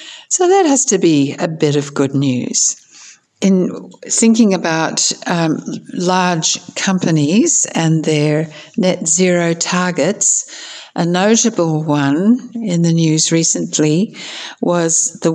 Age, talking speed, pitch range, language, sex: 60-79, 115 wpm, 170-215 Hz, English, female